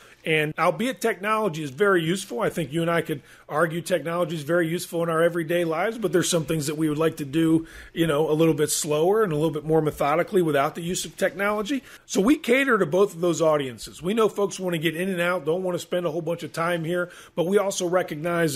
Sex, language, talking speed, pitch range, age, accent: male, English, 255 wpm, 140-175 Hz, 40-59, American